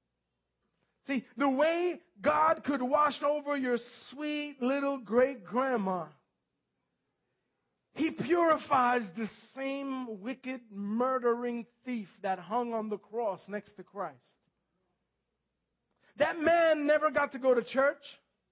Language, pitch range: English, 220-275 Hz